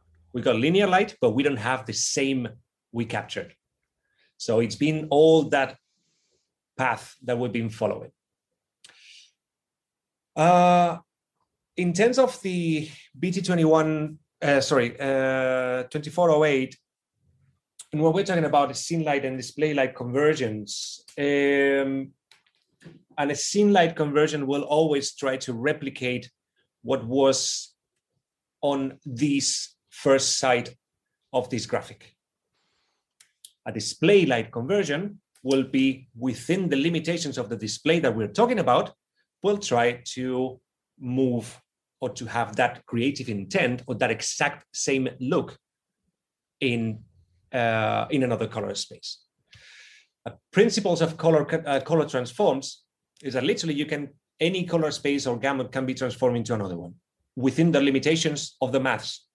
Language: English